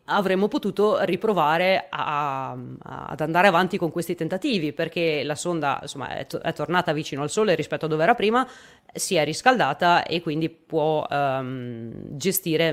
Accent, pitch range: native, 155-200 Hz